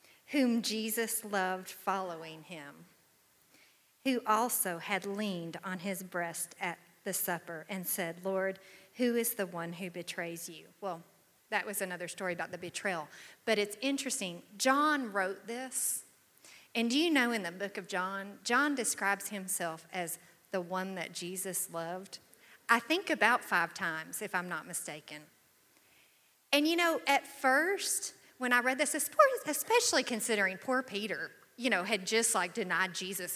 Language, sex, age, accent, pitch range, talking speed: English, female, 40-59, American, 185-250 Hz, 155 wpm